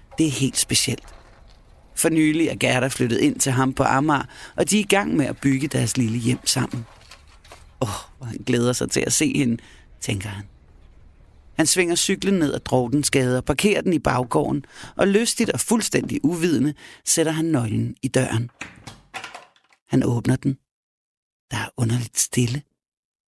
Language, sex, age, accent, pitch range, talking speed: Danish, male, 30-49, native, 125-160 Hz, 175 wpm